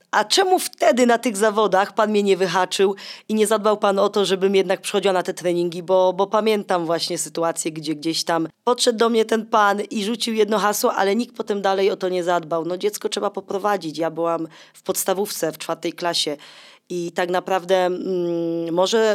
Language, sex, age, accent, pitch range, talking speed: Polish, female, 20-39, native, 170-220 Hz, 195 wpm